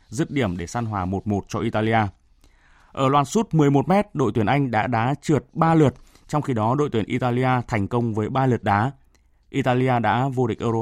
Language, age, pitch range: Vietnamese, 20-39, 110-150 Hz